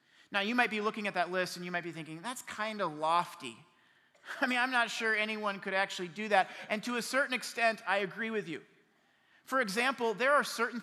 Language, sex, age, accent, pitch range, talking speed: English, male, 40-59, American, 175-235 Hz, 225 wpm